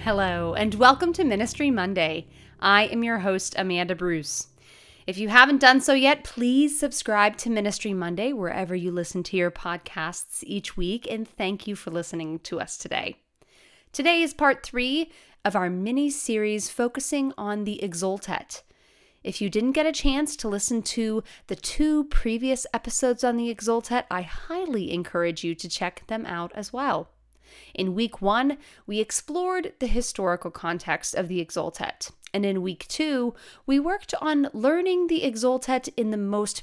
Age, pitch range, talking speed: 30-49, 185-275 Hz, 165 wpm